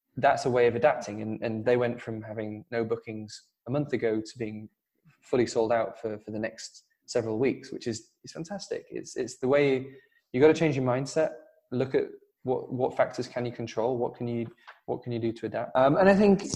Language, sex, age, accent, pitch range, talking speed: English, male, 20-39, British, 115-145 Hz, 225 wpm